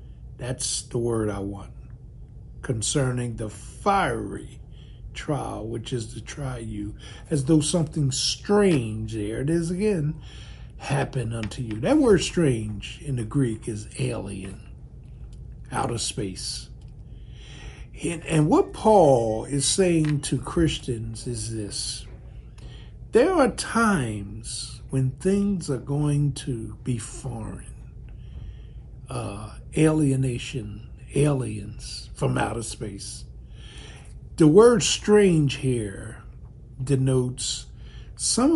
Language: English